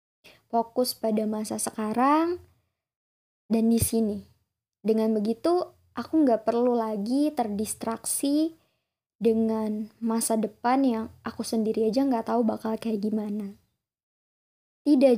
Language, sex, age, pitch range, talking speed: Indonesian, male, 20-39, 215-250 Hz, 105 wpm